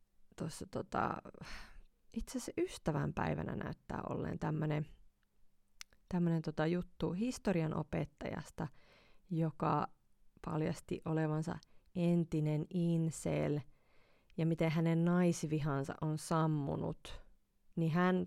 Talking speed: 80 wpm